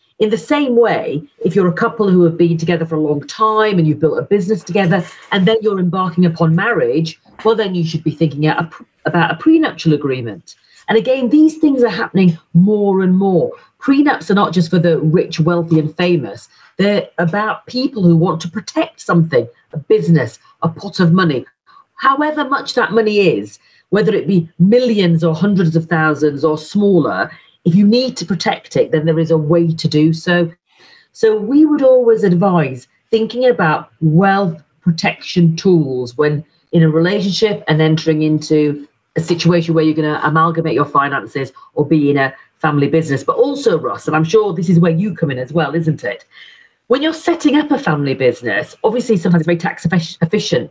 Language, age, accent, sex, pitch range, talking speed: English, 40-59, British, female, 160-205 Hz, 190 wpm